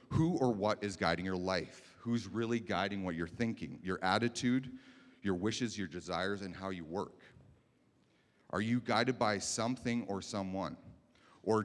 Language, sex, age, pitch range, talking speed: English, male, 30-49, 90-115 Hz, 160 wpm